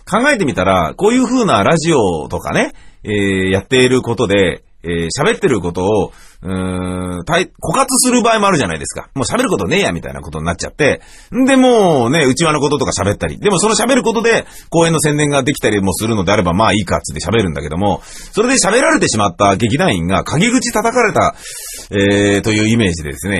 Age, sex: 40-59, male